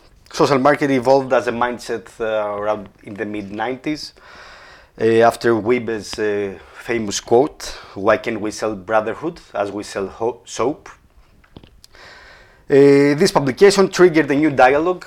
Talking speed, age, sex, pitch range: 140 wpm, 30-49, male, 110-145 Hz